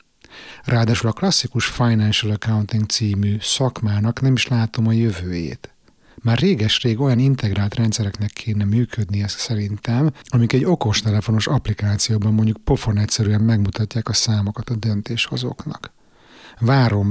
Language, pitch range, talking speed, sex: Hungarian, 105-125 Hz, 125 wpm, male